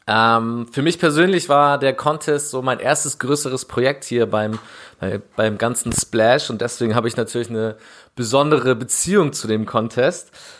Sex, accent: male, German